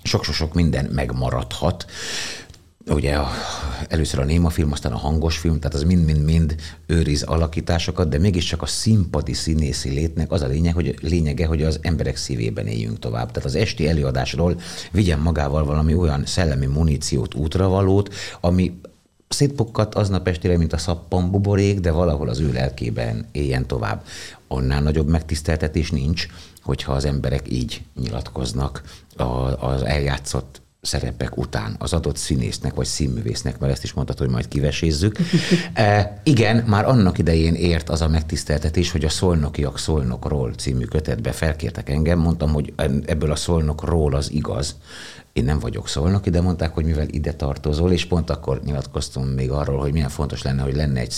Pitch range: 70-85 Hz